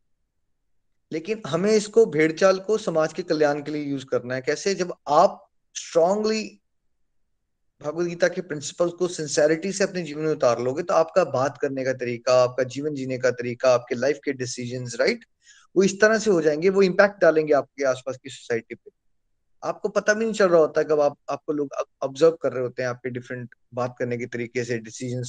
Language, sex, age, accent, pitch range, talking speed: Hindi, male, 20-39, native, 135-185 Hz, 200 wpm